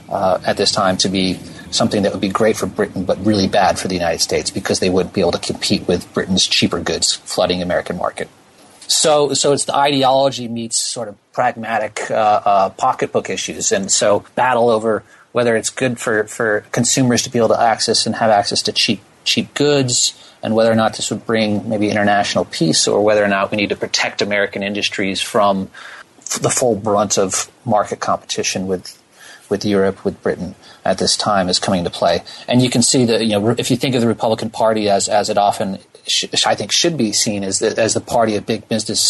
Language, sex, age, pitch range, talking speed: English, male, 30-49, 100-120 Hz, 215 wpm